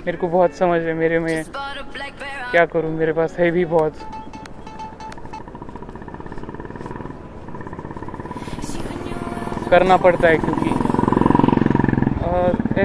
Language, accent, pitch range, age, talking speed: Marathi, native, 155-185 Hz, 20-39, 65 wpm